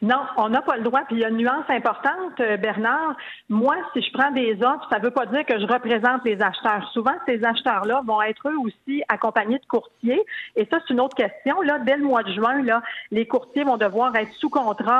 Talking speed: 240 wpm